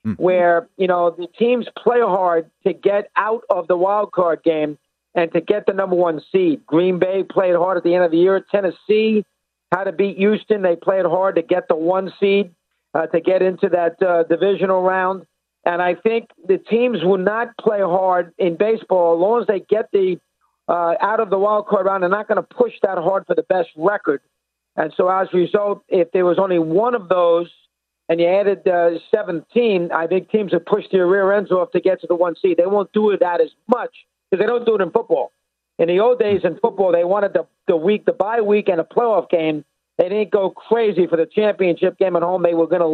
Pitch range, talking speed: 175-215 Hz, 230 wpm